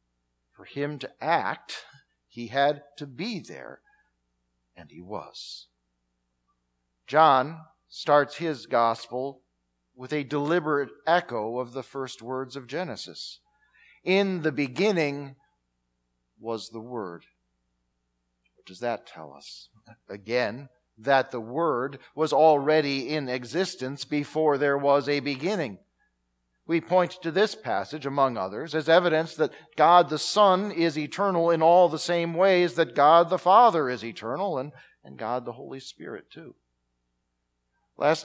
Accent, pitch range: American, 105-150 Hz